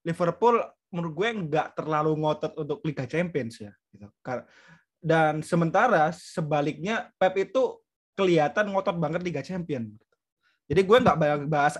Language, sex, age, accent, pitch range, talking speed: Indonesian, male, 20-39, native, 145-180 Hz, 120 wpm